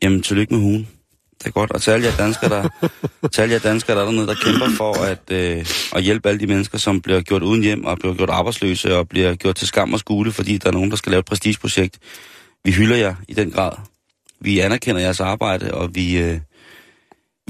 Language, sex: Danish, male